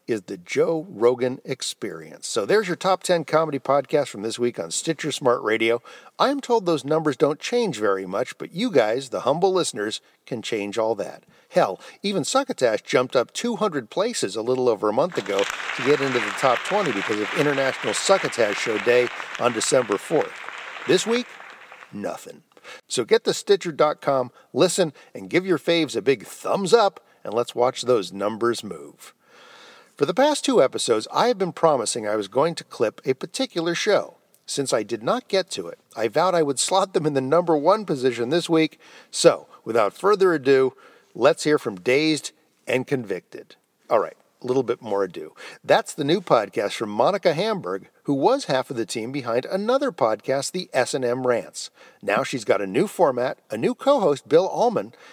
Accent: American